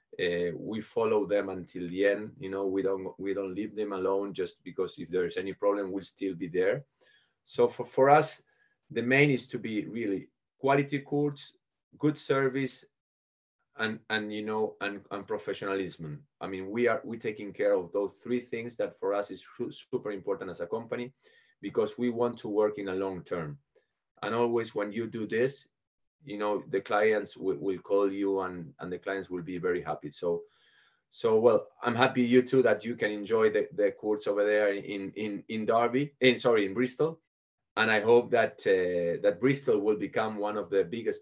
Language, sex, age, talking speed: English, male, 30-49, 195 wpm